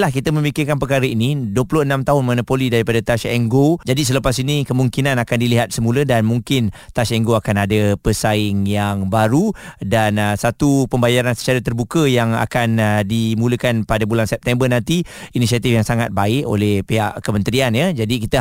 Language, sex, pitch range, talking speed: Malay, male, 115-140 Hz, 160 wpm